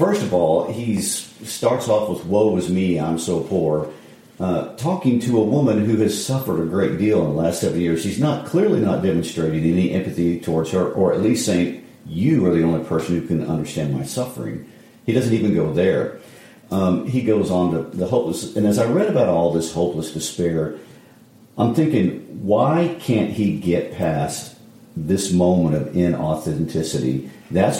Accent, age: American, 50-69